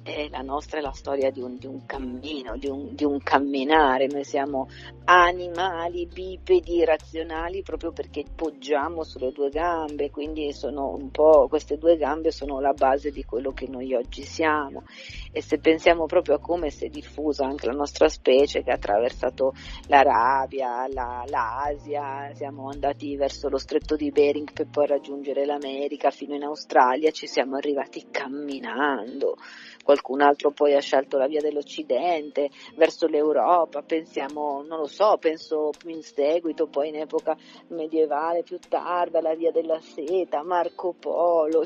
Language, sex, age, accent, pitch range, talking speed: Italian, female, 40-59, native, 140-175 Hz, 155 wpm